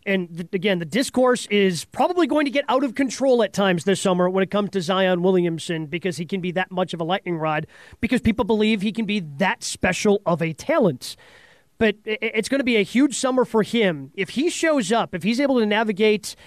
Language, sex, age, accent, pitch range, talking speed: English, male, 30-49, American, 185-230 Hz, 225 wpm